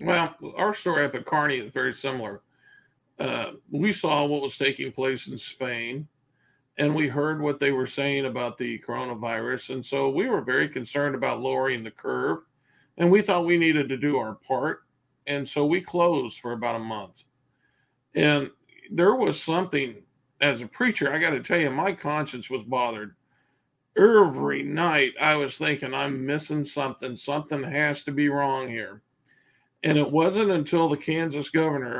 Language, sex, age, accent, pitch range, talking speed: English, male, 50-69, American, 130-150 Hz, 175 wpm